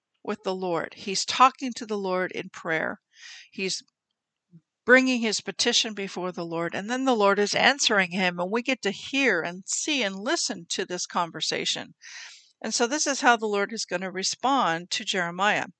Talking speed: 185 wpm